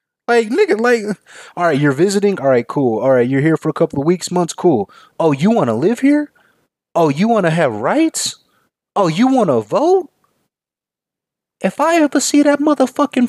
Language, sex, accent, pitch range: English, male, American, 165-250 Hz